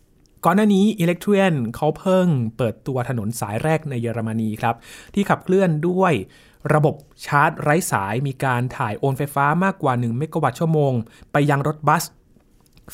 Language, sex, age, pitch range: Thai, male, 20-39, 120-155 Hz